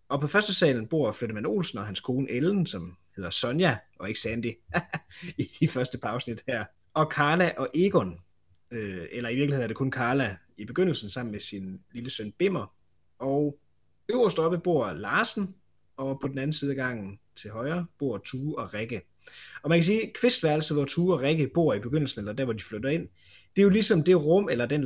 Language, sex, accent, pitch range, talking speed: Danish, male, native, 110-160 Hz, 210 wpm